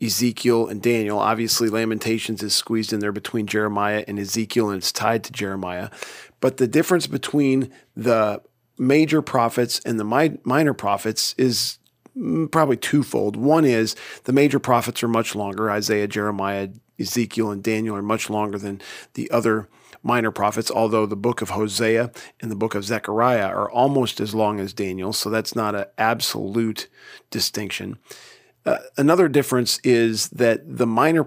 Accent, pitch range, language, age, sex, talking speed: American, 105-130 Hz, English, 40-59, male, 155 wpm